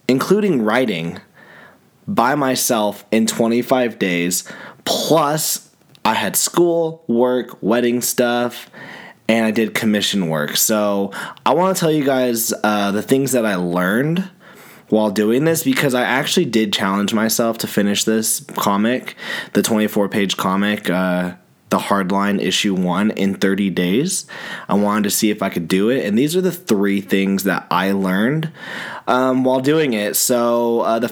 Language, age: English, 20-39